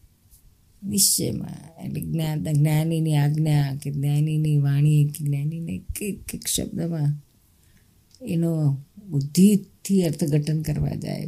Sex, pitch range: female, 140-175 Hz